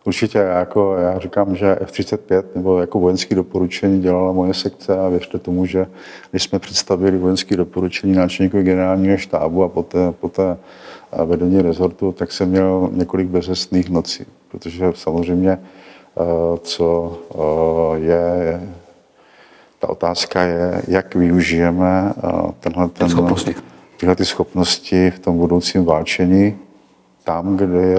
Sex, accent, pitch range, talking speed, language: male, native, 85-95 Hz, 125 wpm, Czech